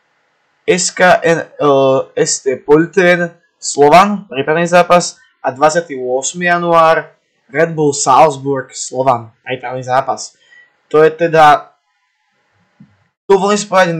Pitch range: 135-165 Hz